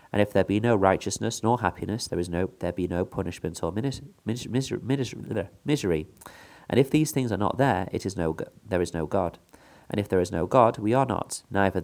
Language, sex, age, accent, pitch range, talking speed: English, male, 30-49, British, 90-125 Hz, 225 wpm